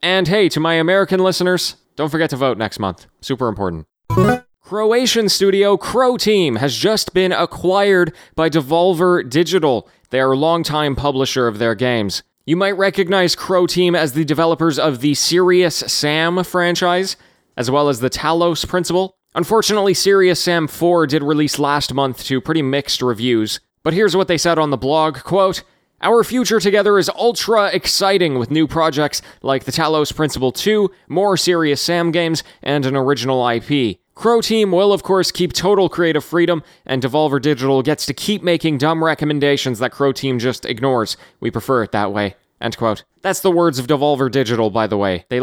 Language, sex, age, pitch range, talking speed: English, male, 20-39, 135-185 Hz, 180 wpm